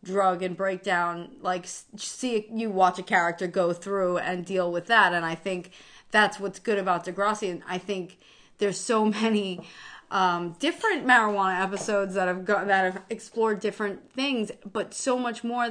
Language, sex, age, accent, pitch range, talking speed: English, female, 30-49, American, 185-220 Hz, 170 wpm